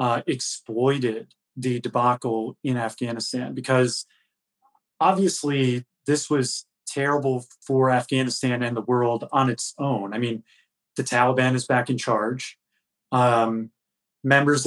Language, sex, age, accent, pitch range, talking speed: English, male, 30-49, American, 120-135 Hz, 120 wpm